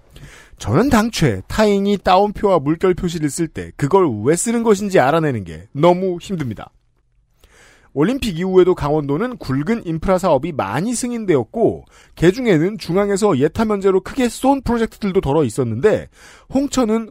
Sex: male